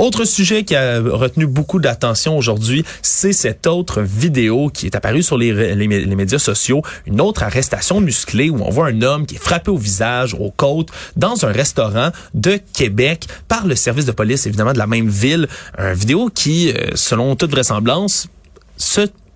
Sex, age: male, 30-49